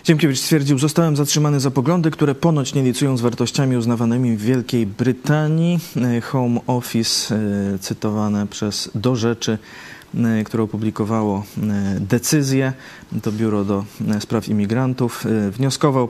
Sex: male